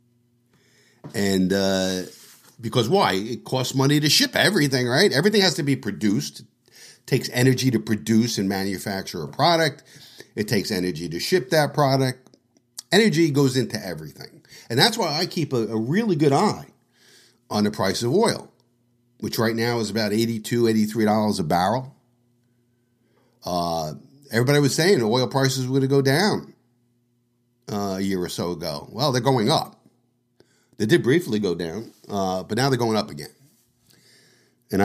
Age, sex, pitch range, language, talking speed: 50-69, male, 100-135 Hz, English, 160 wpm